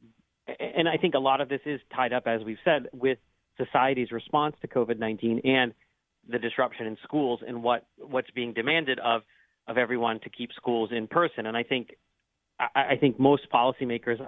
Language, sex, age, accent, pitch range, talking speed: English, male, 40-59, American, 115-135 Hz, 185 wpm